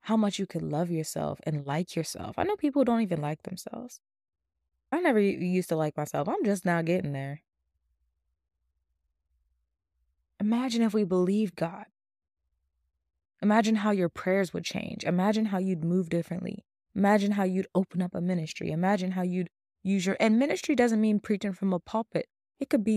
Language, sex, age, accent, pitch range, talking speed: English, female, 20-39, American, 125-200 Hz, 175 wpm